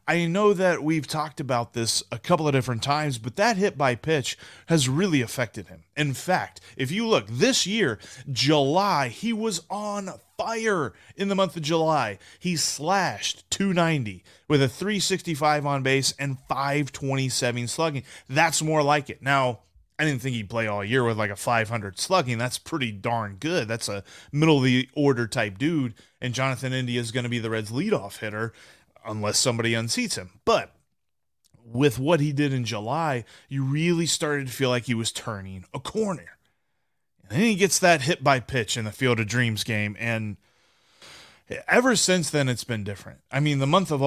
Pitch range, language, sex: 120-160 Hz, English, male